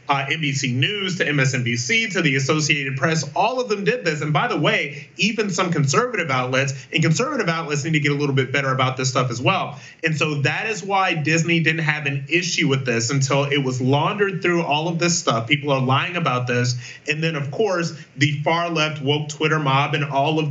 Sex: male